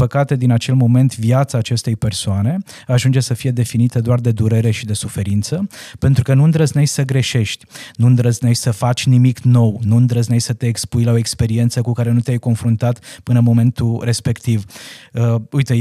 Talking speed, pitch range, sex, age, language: 180 wpm, 115-135 Hz, male, 20-39, Romanian